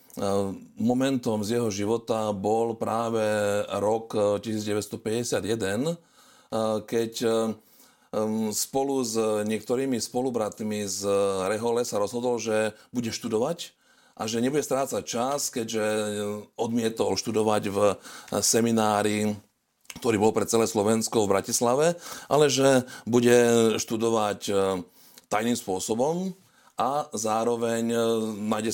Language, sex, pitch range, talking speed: Slovak, male, 105-130 Hz, 95 wpm